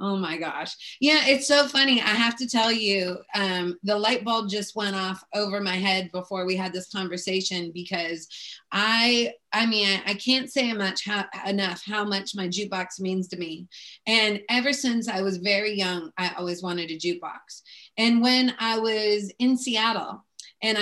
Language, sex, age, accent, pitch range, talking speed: English, female, 30-49, American, 190-235 Hz, 175 wpm